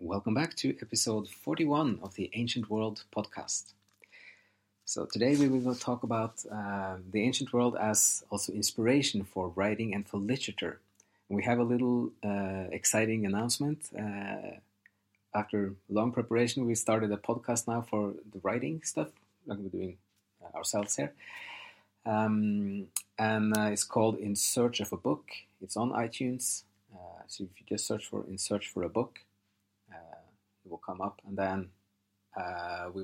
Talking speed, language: 155 wpm, English